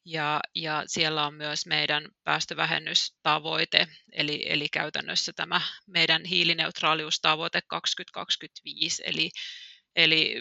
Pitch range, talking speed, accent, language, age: 155-175 Hz, 80 wpm, native, Finnish, 30-49